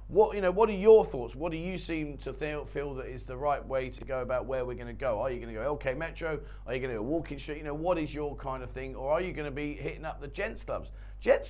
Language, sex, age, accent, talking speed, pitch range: English, male, 40-59, British, 320 wpm, 125-165 Hz